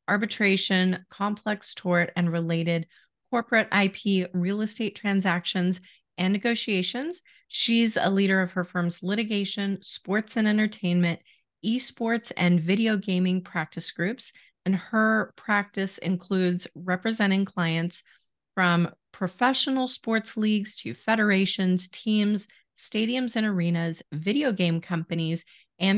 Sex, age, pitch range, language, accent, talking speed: female, 30-49, 175-220 Hz, English, American, 110 wpm